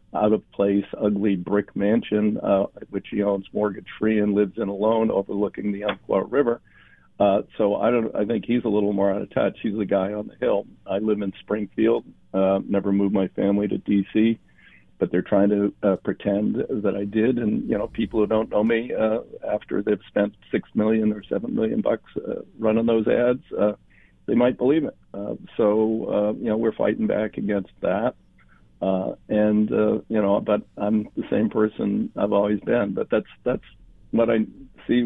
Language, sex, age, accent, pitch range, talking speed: English, male, 50-69, American, 100-110 Hz, 190 wpm